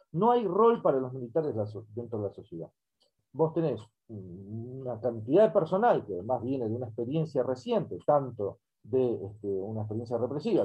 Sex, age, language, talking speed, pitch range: male, 40-59, Spanish, 165 wpm, 115-160 Hz